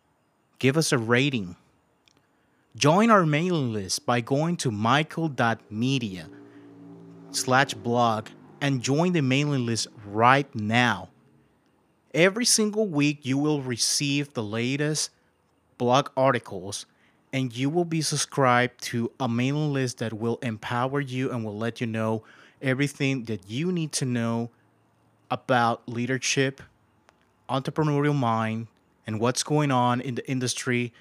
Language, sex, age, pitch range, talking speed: English, male, 30-49, 120-145 Hz, 125 wpm